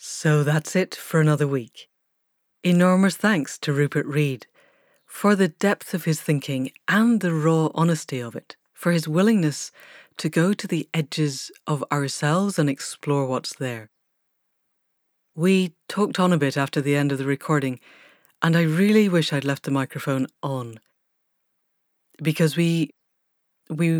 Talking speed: 150 wpm